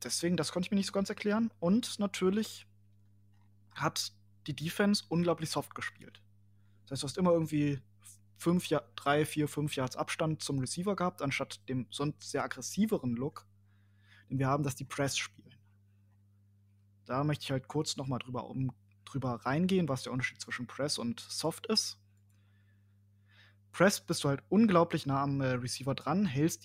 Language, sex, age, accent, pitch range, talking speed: German, male, 20-39, German, 100-150 Hz, 165 wpm